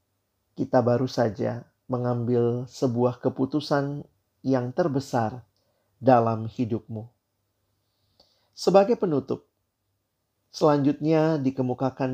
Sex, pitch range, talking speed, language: male, 115-140 Hz, 70 wpm, Indonesian